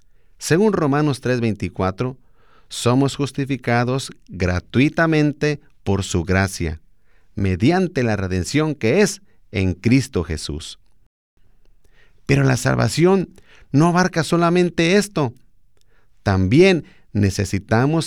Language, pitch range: Spanish, 100-150 Hz